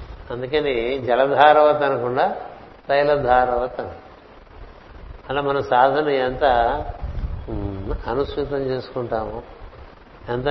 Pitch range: 105-140 Hz